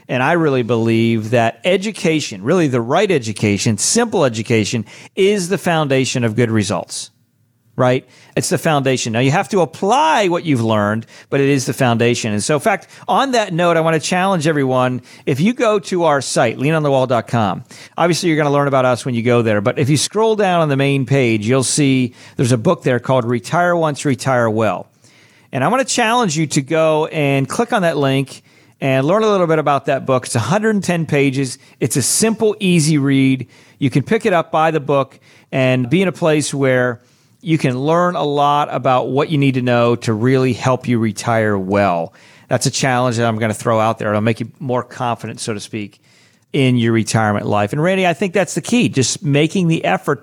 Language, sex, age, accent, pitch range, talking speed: English, male, 40-59, American, 120-160 Hz, 215 wpm